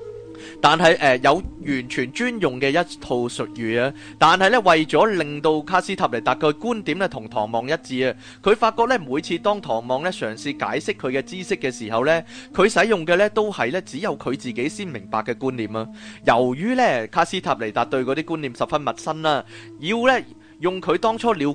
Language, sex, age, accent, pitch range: Chinese, male, 30-49, native, 120-190 Hz